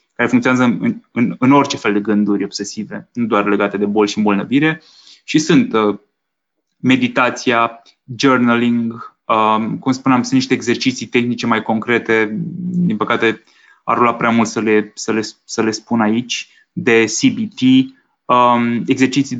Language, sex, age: Romanian, male, 20-39